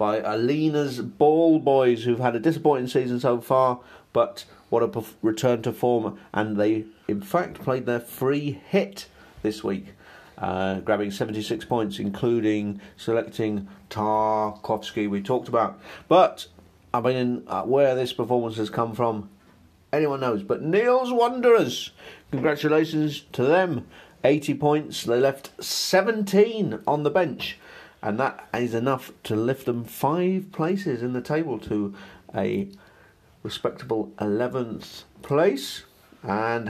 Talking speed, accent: 135 wpm, British